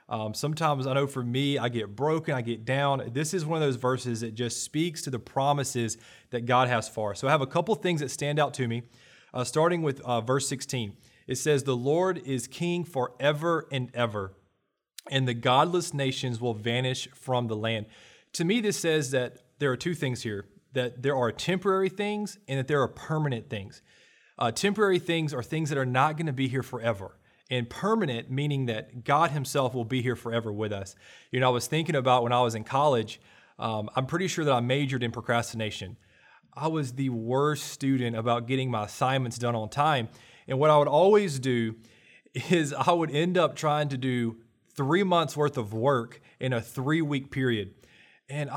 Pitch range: 120-150 Hz